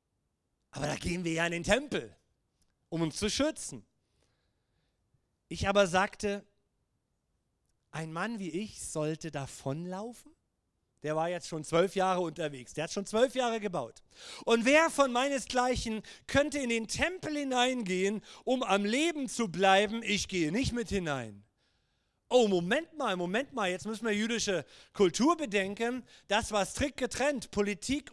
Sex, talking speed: male, 145 wpm